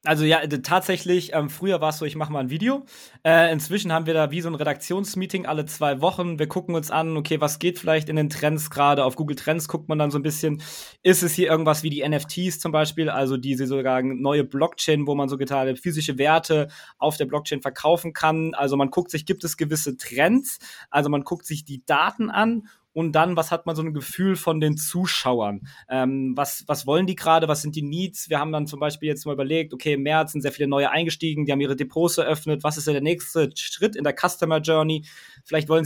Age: 20-39